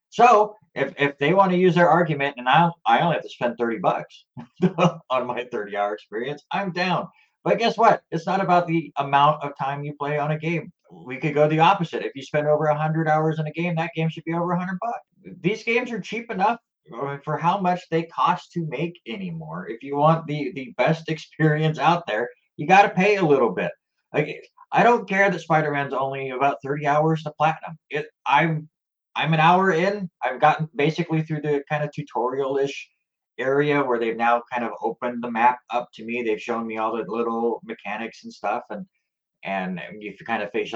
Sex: male